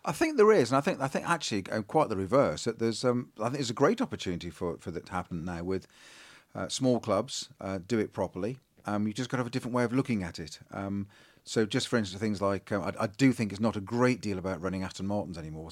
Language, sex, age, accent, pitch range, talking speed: English, male, 40-59, British, 95-115 Hz, 265 wpm